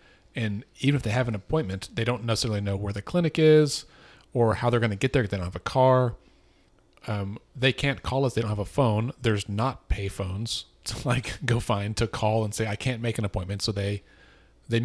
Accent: American